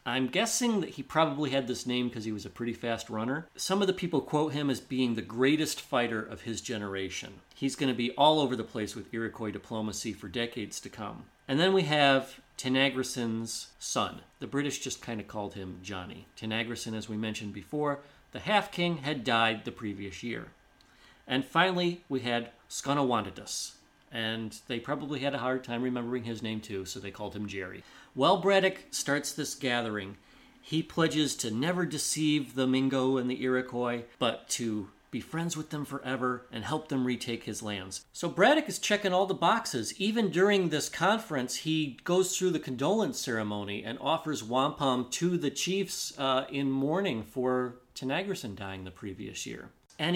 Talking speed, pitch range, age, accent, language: 180 wpm, 115-160 Hz, 40-59, American, English